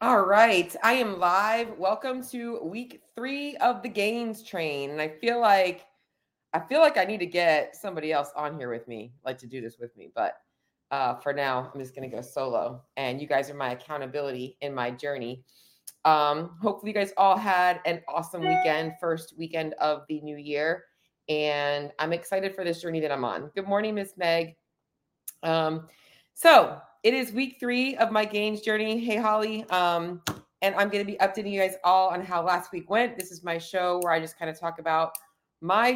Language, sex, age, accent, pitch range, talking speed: English, female, 30-49, American, 140-190 Hz, 205 wpm